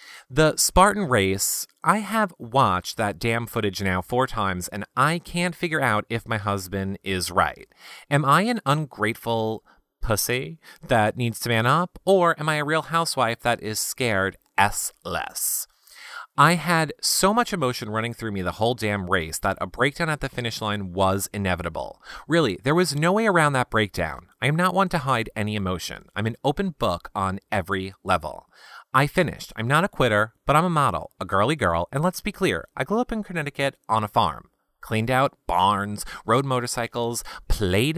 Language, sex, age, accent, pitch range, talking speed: English, male, 30-49, American, 105-155 Hz, 185 wpm